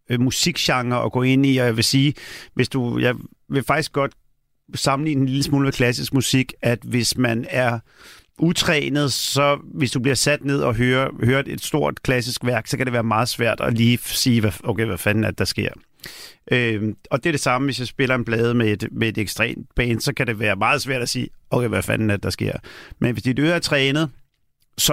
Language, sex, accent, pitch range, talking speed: Danish, male, native, 115-140 Hz, 225 wpm